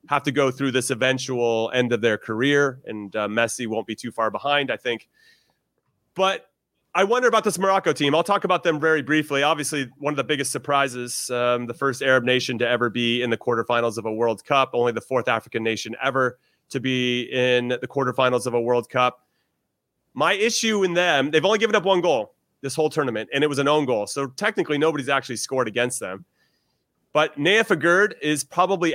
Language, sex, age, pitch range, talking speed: English, male, 30-49, 120-155 Hz, 205 wpm